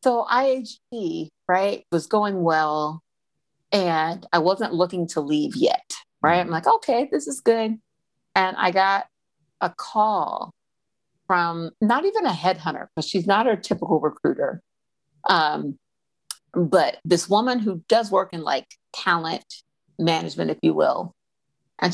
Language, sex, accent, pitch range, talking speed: English, female, American, 160-205 Hz, 140 wpm